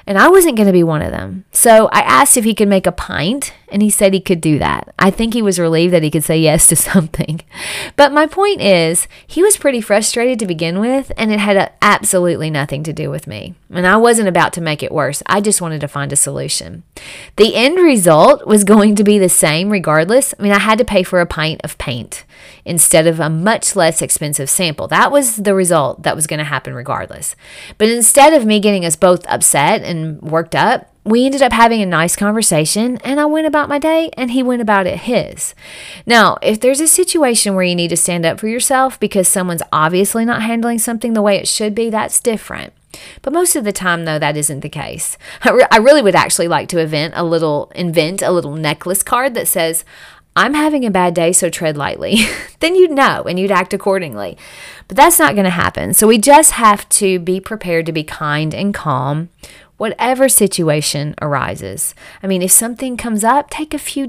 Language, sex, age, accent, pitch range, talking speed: English, female, 30-49, American, 165-230 Hz, 220 wpm